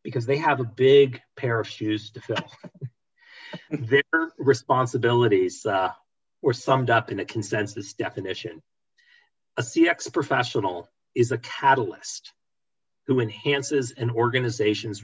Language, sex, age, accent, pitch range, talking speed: English, male, 40-59, American, 120-175 Hz, 120 wpm